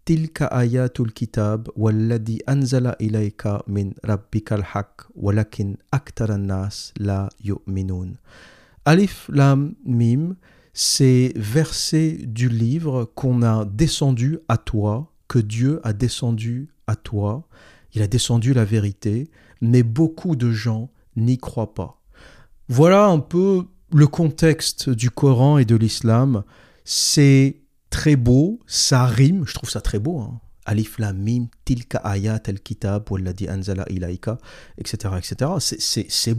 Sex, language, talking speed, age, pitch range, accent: male, French, 115 wpm, 50-69, 110-140 Hz, French